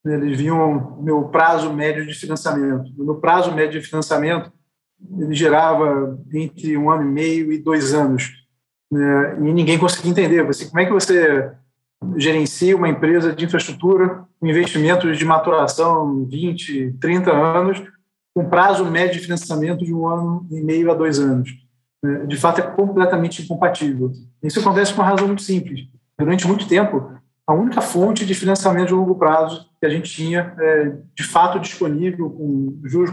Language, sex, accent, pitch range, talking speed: Portuguese, male, Brazilian, 150-180 Hz, 160 wpm